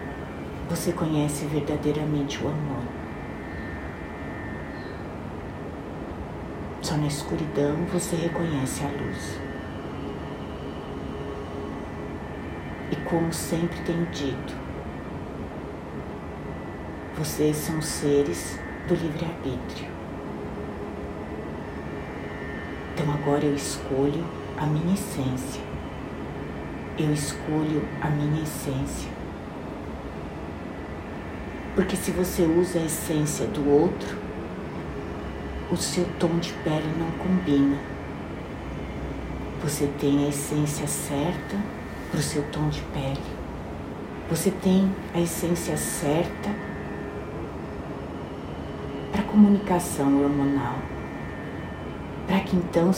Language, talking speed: Portuguese, 80 wpm